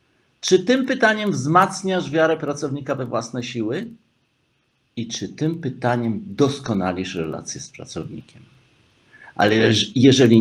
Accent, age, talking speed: native, 50-69, 110 wpm